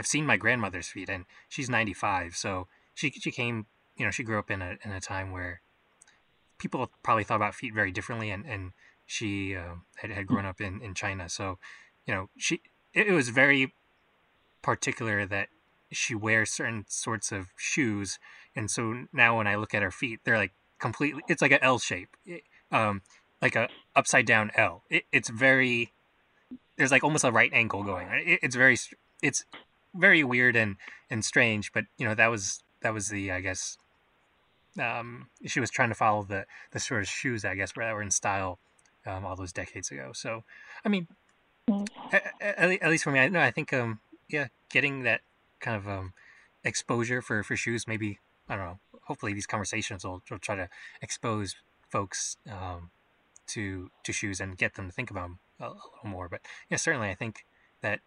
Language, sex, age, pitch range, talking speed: English, male, 20-39, 95-120 Hz, 195 wpm